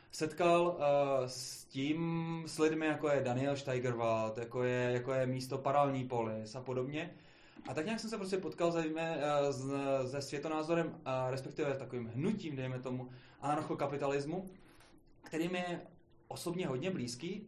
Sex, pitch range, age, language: male, 130-170 Hz, 20-39, Czech